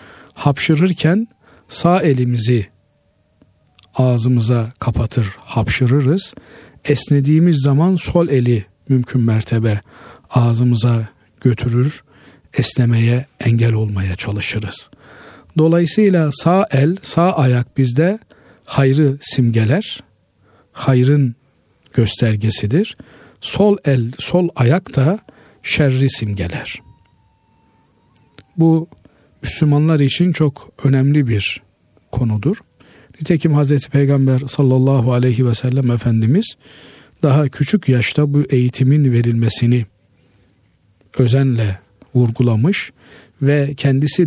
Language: Turkish